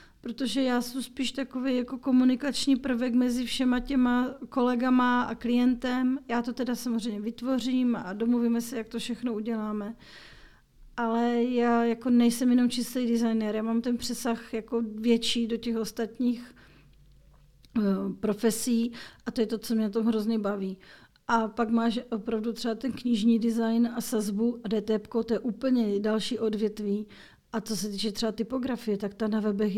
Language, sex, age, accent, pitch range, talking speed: Czech, female, 40-59, native, 215-245 Hz, 160 wpm